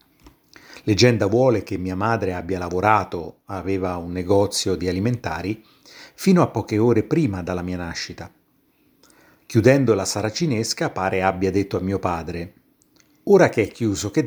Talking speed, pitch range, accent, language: 145 wpm, 95-120 Hz, native, Italian